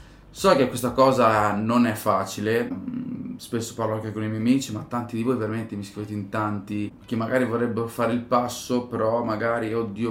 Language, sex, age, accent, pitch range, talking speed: Italian, male, 20-39, native, 110-125 Hz, 190 wpm